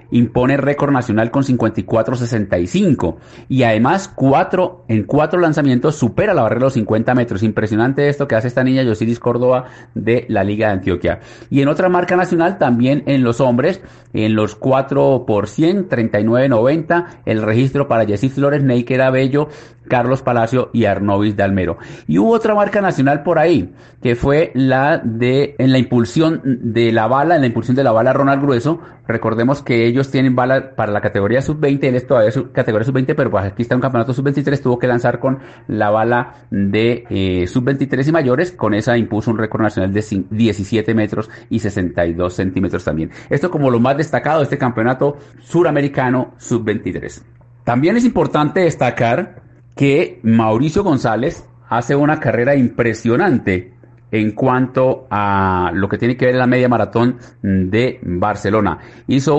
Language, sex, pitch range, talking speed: Spanish, male, 110-140 Hz, 165 wpm